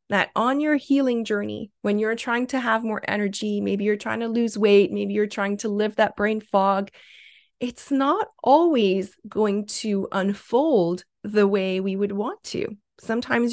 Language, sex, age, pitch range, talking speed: English, female, 30-49, 205-245 Hz, 175 wpm